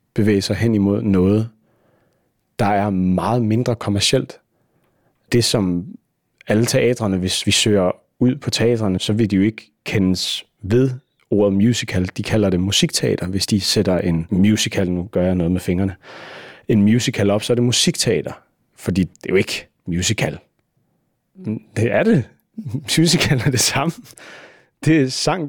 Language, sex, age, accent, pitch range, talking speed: Danish, male, 30-49, native, 100-125 Hz, 160 wpm